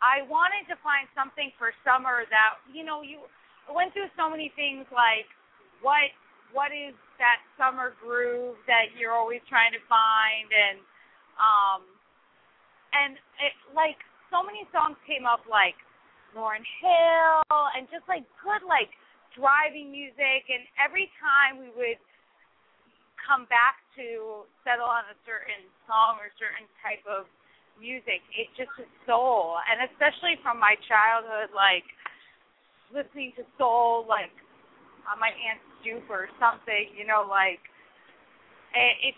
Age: 30-49